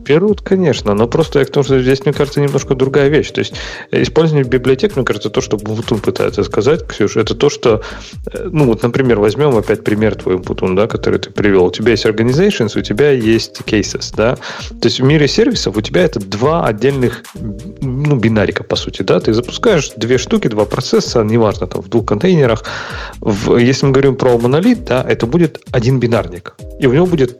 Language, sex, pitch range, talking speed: Russian, male, 110-140 Hz, 195 wpm